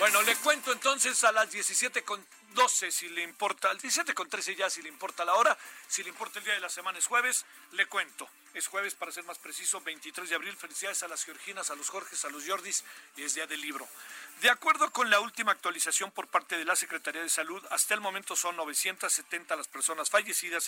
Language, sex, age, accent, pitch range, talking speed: Spanish, male, 50-69, Mexican, 165-220 Hz, 220 wpm